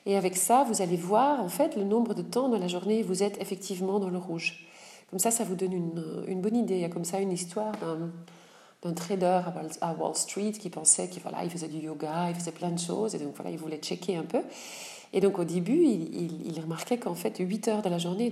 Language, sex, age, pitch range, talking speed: French, female, 40-59, 170-215 Hz, 260 wpm